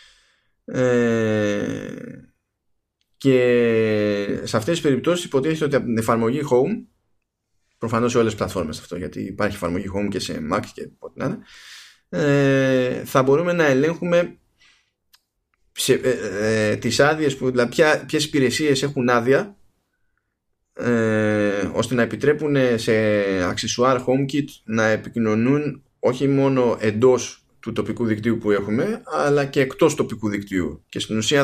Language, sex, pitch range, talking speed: Greek, male, 105-135 Hz, 120 wpm